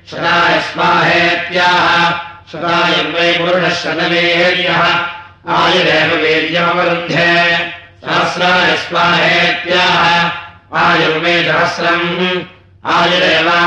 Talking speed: 70 wpm